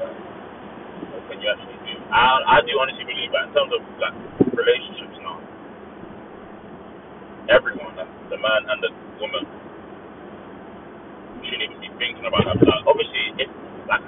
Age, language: 20-39, English